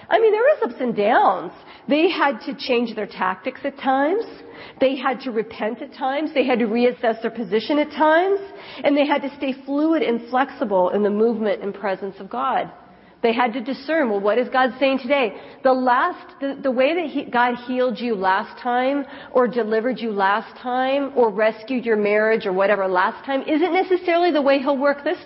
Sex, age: female, 40-59